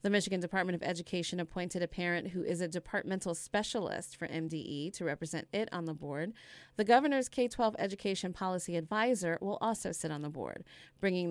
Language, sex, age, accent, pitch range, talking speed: English, female, 30-49, American, 170-210 Hz, 180 wpm